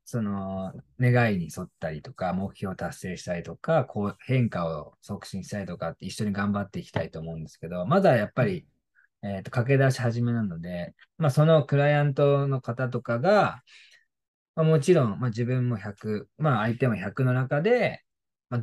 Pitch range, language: 105-140 Hz, Japanese